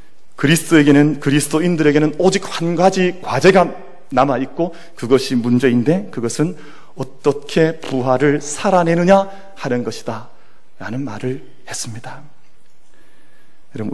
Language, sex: Korean, male